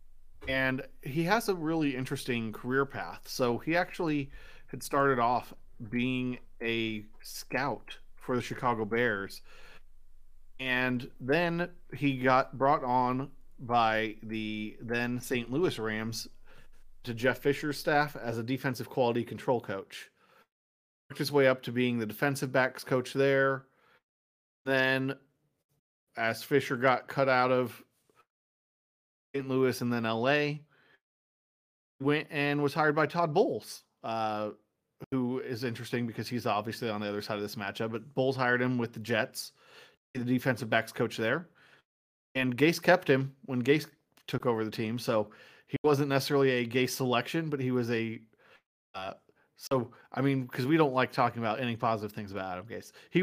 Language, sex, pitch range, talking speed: English, male, 115-140 Hz, 155 wpm